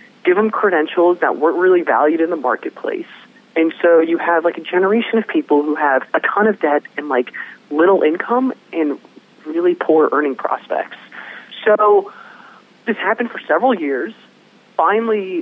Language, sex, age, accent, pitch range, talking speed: English, male, 30-49, American, 155-235 Hz, 160 wpm